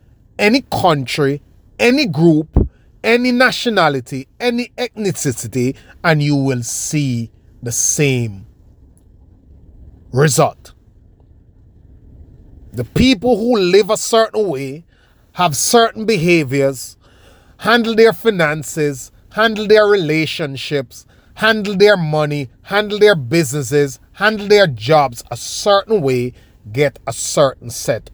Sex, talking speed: male, 100 wpm